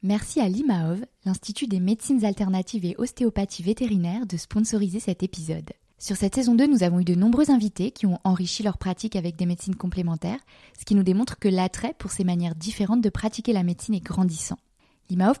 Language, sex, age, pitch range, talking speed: French, female, 20-39, 180-220 Hz, 195 wpm